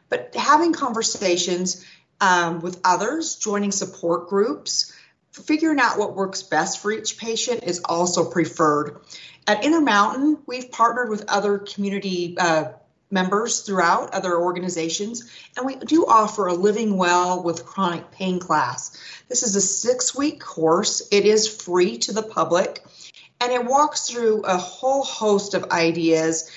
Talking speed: 140 wpm